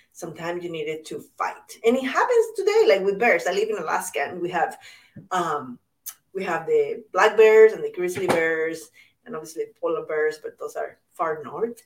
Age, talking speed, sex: 30-49, 185 wpm, female